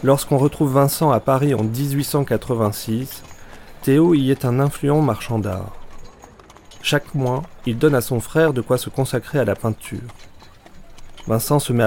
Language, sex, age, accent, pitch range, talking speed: French, male, 40-59, French, 105-130 Hz, 155 wpm